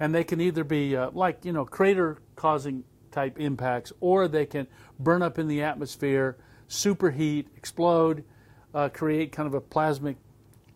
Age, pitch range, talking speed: 50-69, 120-155 Hz, 160 wpm